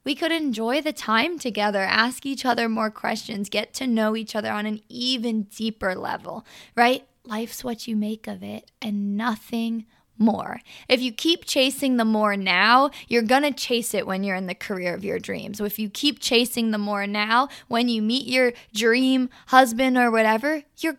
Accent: American